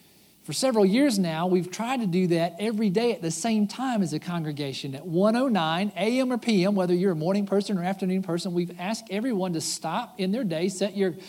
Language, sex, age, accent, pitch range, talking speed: English, male, 50-69, American, 165-215 Hz, 220 wpm